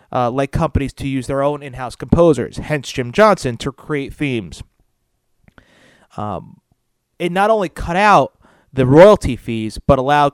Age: 30-49